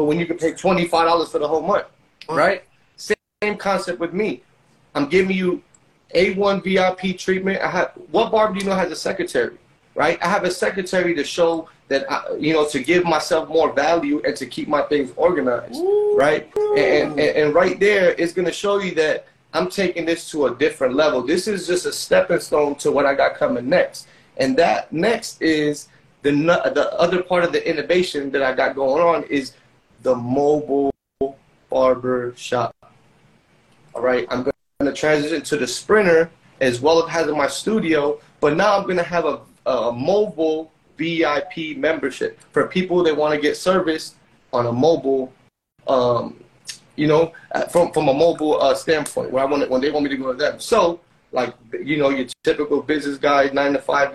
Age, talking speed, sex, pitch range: 30-49, 190 wpm, male, 140-180 Hz